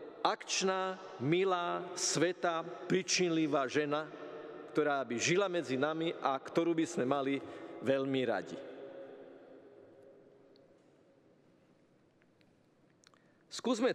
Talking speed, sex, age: 75 wpm, male, 50-69